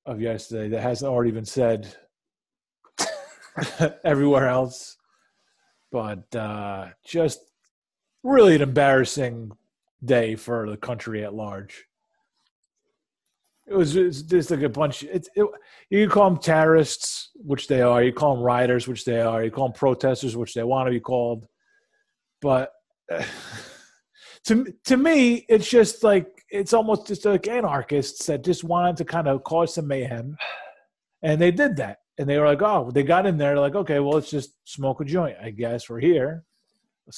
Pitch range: 125-180 Hz